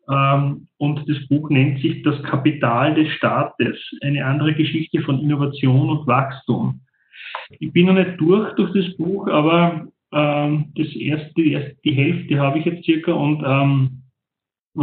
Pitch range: 140-165 Hz